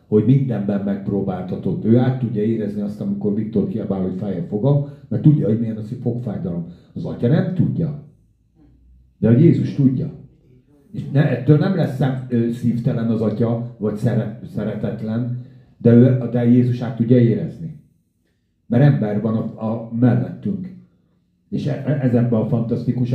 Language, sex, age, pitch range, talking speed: Hungarian, male, 50-69, 115-145 Hz, 150 wpm